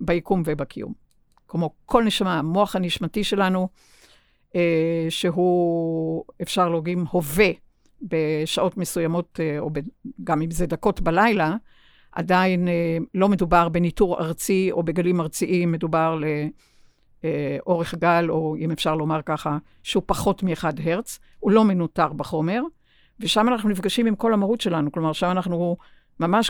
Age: 60-79